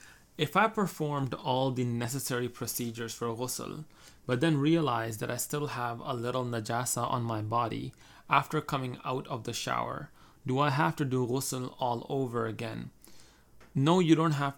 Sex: male